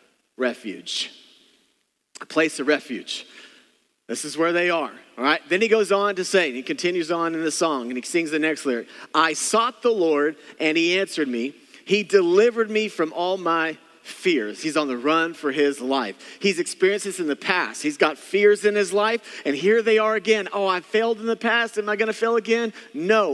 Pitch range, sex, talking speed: 165-230 Hz, male, 215 wpm